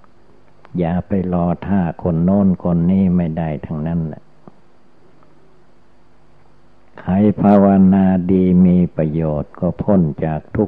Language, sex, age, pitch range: Thai, male, 60-79, 80-95 Hz